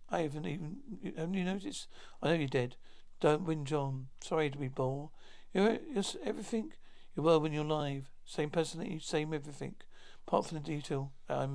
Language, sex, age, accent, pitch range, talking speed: English, male, 60-79, British, 145-175 Hz, 175 wpm